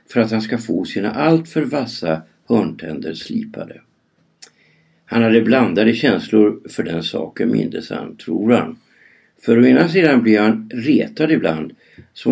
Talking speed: 140 wpm